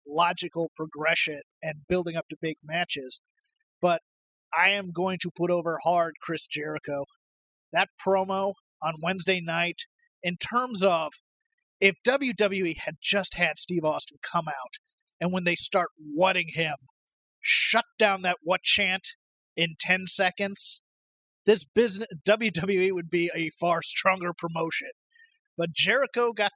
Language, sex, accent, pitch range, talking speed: English, male, American, 170-215 Hz, 140 wpm